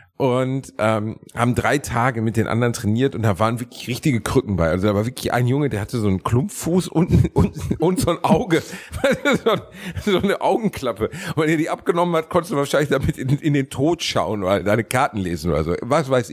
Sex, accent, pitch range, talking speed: male, German, 125-195 Hz, 215 wpm